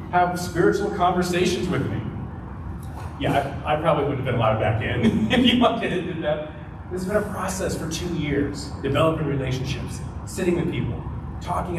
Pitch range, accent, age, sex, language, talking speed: 105-175 Hz, American, 30-49, male, English, 180 wpm